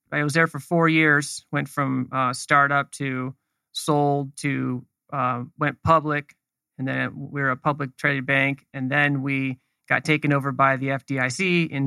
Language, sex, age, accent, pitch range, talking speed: English, male, 30-49, American, 130-150 Hz, 180 wpm